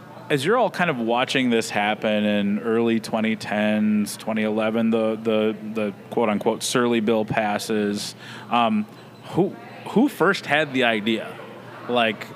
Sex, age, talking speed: male, 30-49, 135 wpm